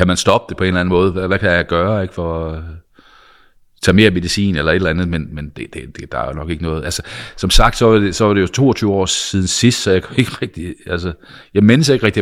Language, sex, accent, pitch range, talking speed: Danish, male, native, 80-100 Hz, 290 wpm